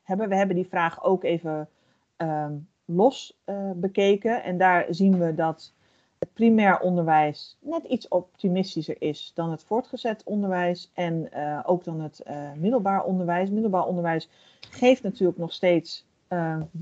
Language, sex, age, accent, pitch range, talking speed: Dutch, female, 40-59, Dutch, 180-230 Hz, 145 wpm